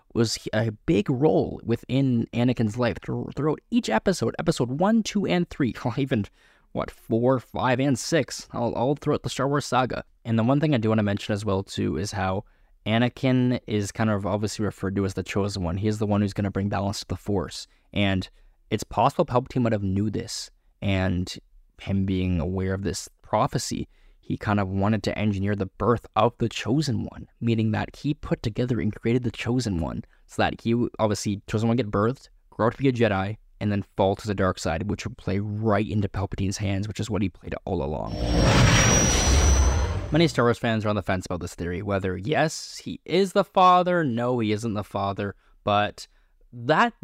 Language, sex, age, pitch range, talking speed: English, male, 20-39, 95-125 Hz, 205 wpm